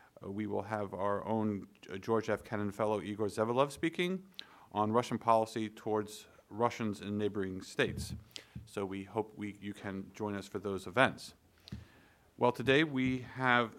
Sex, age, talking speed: male, 40-59, 155 wpm